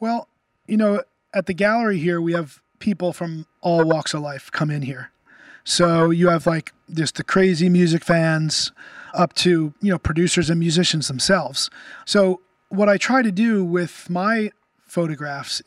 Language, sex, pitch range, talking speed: English, male, 155-180 Hz, 170 wpm